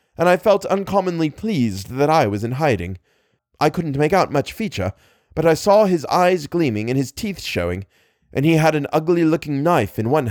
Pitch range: 105-160 Hz